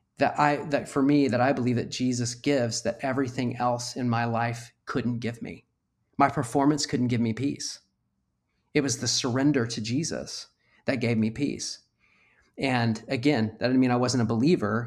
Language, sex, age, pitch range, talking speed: English, male, 30-49, 115-140 Hz, 180 wpm